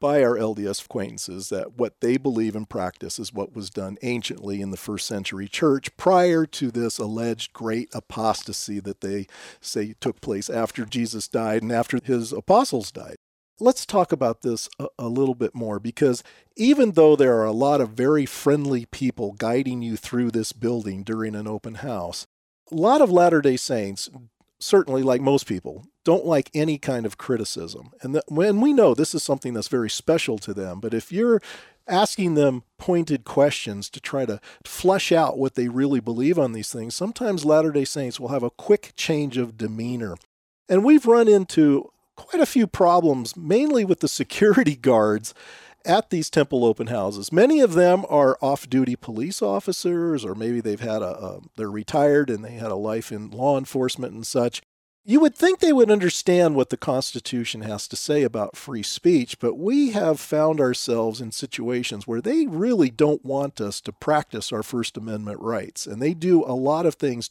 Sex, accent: male, American